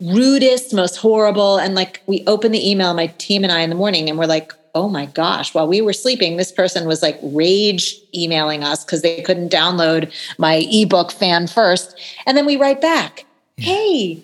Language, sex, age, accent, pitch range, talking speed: English, female, 40-59, American, 175-220 Hz, 200 wpm